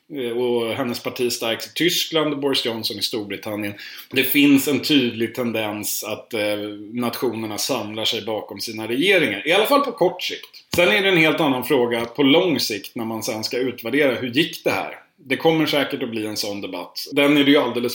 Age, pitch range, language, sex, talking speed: 30-49, 110-145 Hz, Swedish, male, 205 wpm